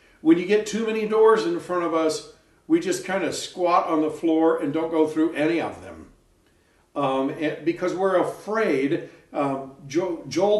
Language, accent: English, American